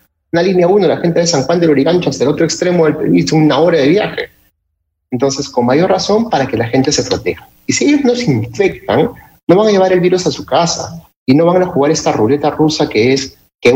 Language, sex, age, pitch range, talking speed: Spanish, male, 30-49, 120-165 Hz, 240 wpm